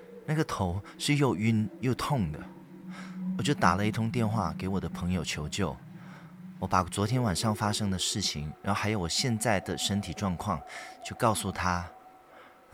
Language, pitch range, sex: Chinese, 95-140 Hz, male